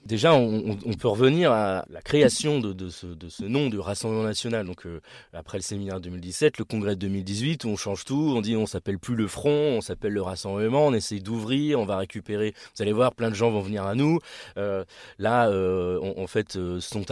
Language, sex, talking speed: French, male, 235 wpm